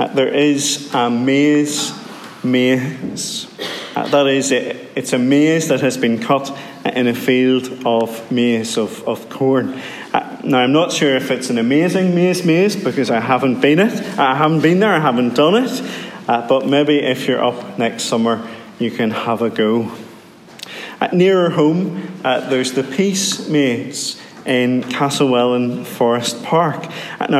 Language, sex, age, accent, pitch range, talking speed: English, male, 30-49, British, 125-160 Hz, 175 wpm